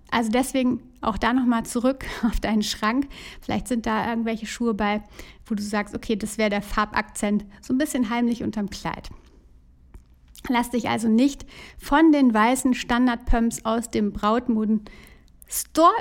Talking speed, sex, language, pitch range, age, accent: 150 wpm, female, German, 215-250 Hz, 60-79, German